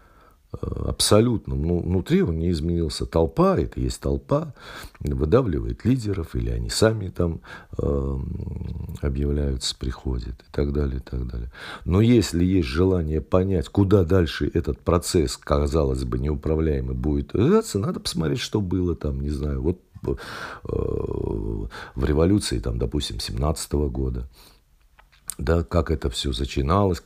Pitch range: 70-100 Hz